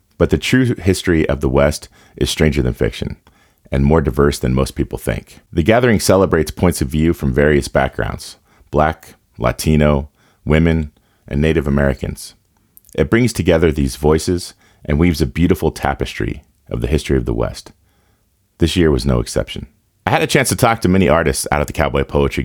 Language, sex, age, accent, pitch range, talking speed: English, male, 30-49, American, 70-90 Hz, 180 wpm